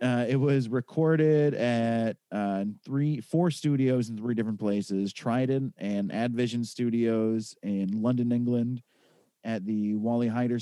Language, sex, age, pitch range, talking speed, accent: English, male, 30-49, 105-125 Hz, 135 wpm, American